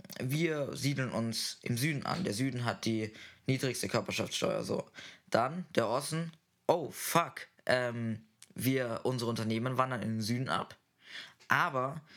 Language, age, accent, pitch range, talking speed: German, 20-39, German, 120-145 Hz, 140 wpm